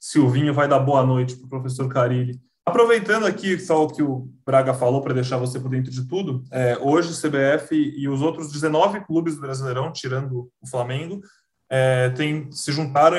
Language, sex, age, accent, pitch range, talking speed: Portuguese, male, 20-39, Brazilian, 125-160 Hz, 185 wpm